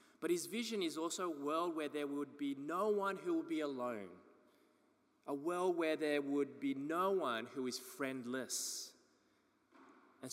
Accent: Australian